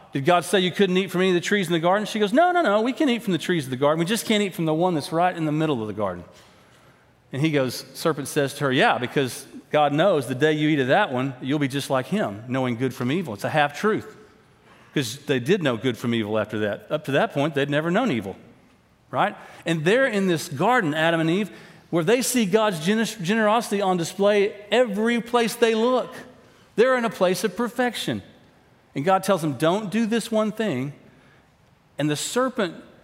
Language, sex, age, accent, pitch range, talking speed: English, male, 40-59, American, 145-205 Hz, 235 wpm